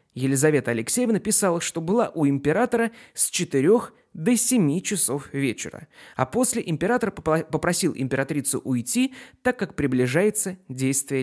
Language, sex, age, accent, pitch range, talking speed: Russian, male, 30-49, native, 135-210 Hz, 125 wpm